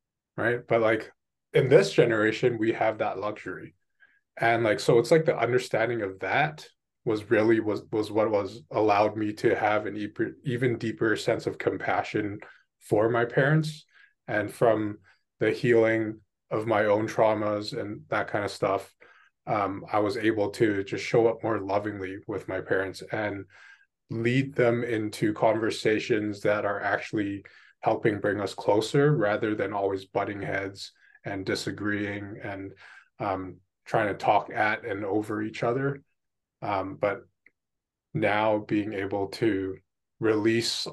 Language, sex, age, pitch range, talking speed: English, male, 20-39, 100-120 Hz, 145 wpm